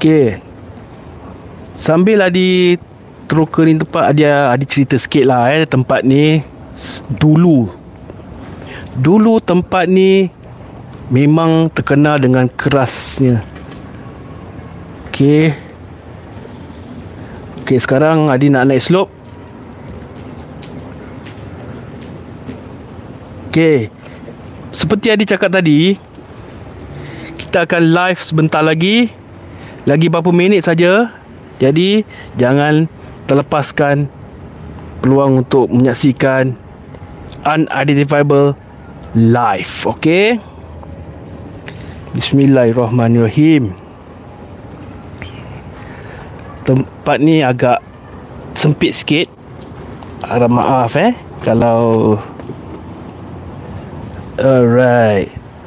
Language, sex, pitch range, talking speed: Malay, male, 105-155 Hz, 70 wpm